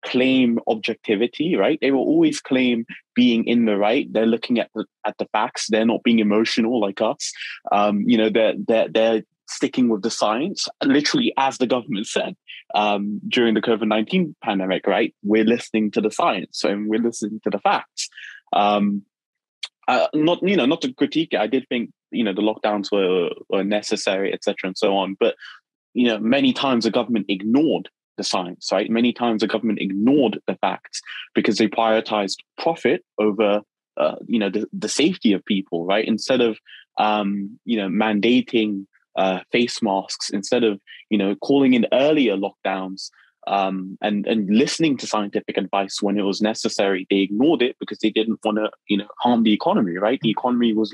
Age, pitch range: 20-39, 105-120 Hz